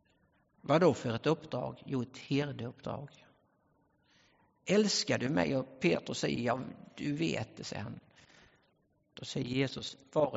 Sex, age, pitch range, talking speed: male, 60-79, 140-180 Hz, 135 wpm